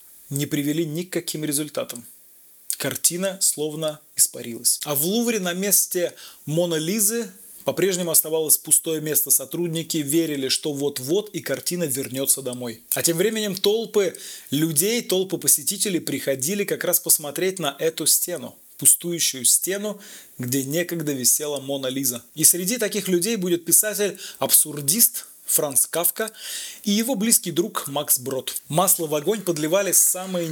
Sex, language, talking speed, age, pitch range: male, Russian, 130 wpm, 20-39, 150-190 Hz